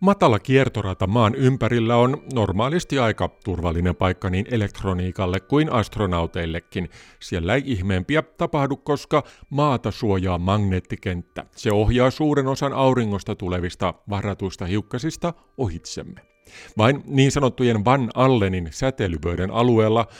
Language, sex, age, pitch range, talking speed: Finnish, male, 50-69, 95-130 Hz, 110 wpm